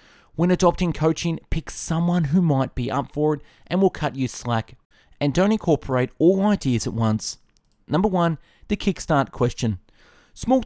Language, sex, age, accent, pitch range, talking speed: English, male, 30-49, Australian, 120-175 Hz, 165 wpm